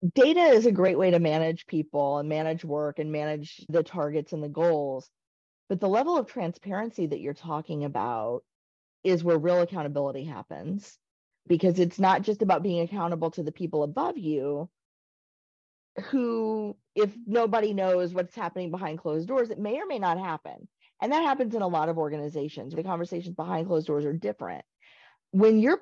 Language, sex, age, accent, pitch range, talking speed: English, female, 30-49, American, 160-225 Hz, 175 wpm